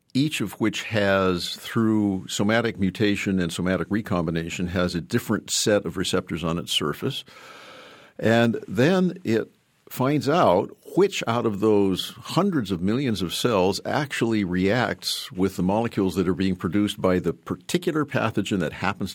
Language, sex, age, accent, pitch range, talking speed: English, male, 50-69, American, 95-115 Hz, 150 wpm